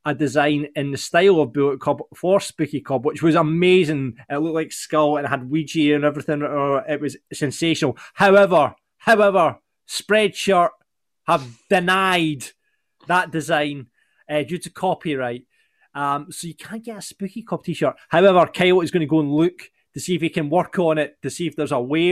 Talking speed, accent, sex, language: 180 wpm, British, male, English